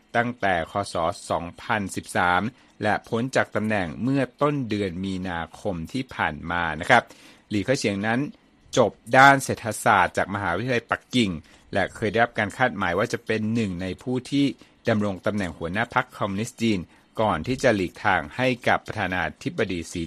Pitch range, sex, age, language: 95-130 Hz, male, 60-79, Thai